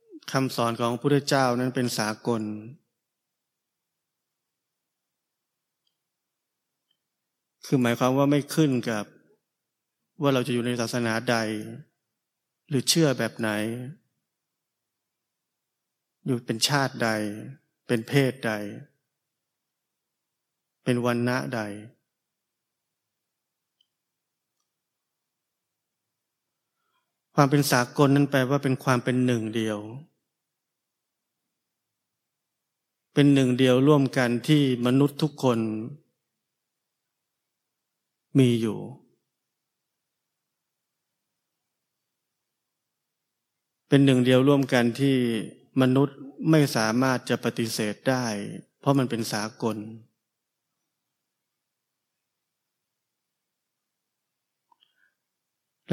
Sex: male